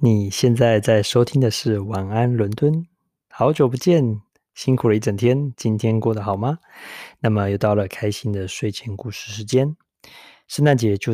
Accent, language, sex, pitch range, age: native, Chinese, male, 100-125 Hz, 20-39